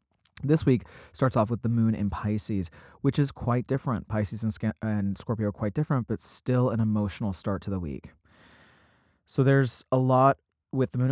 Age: 30-49